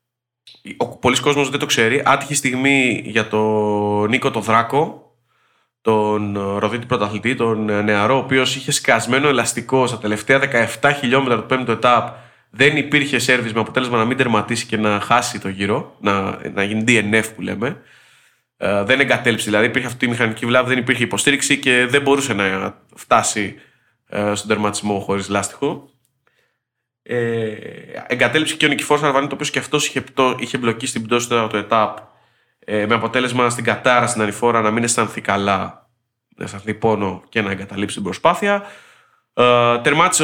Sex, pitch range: male, 105-130 Hz